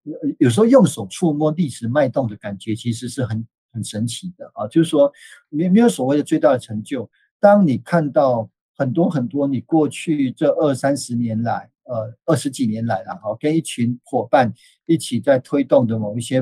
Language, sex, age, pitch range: Chinese, male, 50-69, 115-150 Hz